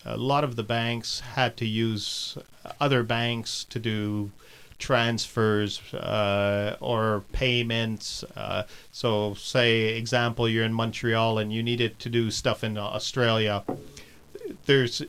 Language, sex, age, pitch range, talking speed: English, male, 40-59, 110-130 Hz, 125 wpm